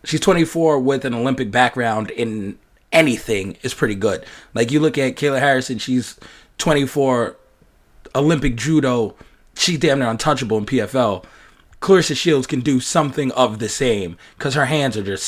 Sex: male